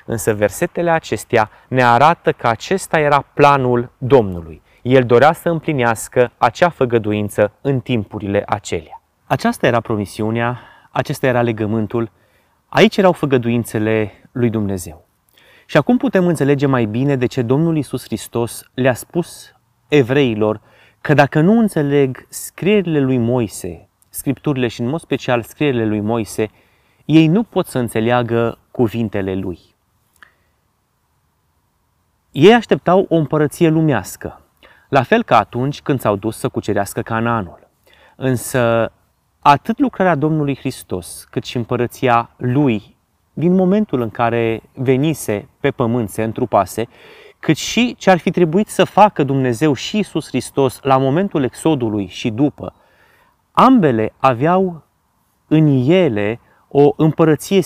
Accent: native